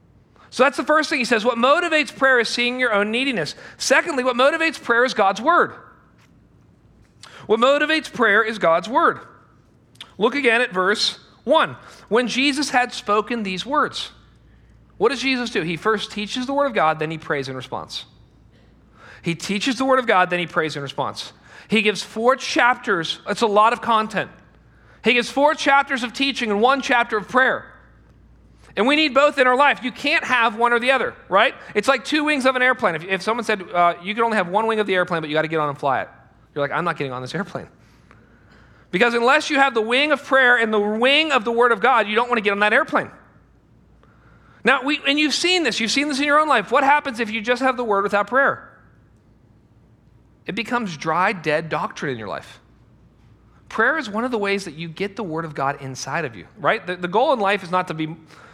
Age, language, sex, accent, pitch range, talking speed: 40-59, English, male, American, 175-265 Hz, 220 wpm